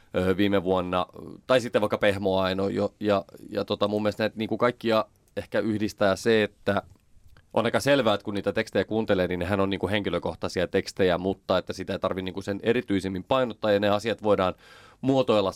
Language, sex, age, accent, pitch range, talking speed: Finnish, male, 30-49, native, 90-105 Hz, 195 wpm